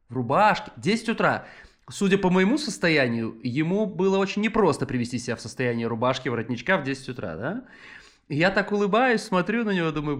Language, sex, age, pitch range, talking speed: Russian, male, 20-39, 125-185 Hz, 170 wpm